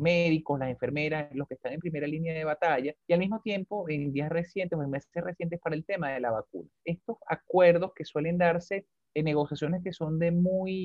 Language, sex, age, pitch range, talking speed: Spanish, male, 30-49, 150-185 Hz, 215 wpm